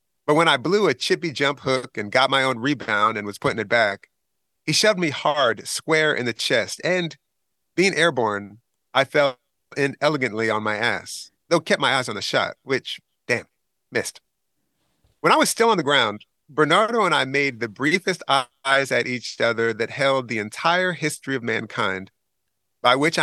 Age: 40-59